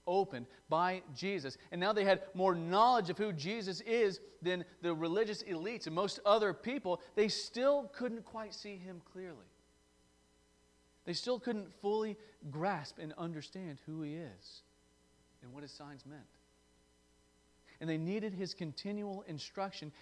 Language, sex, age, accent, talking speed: English, male, 40-59, American, 145 wpm